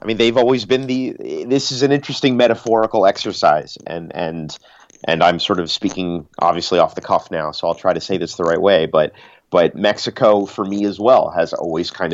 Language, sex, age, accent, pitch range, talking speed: English, male, 30-49, American, 80-105 Hz, 215 wpm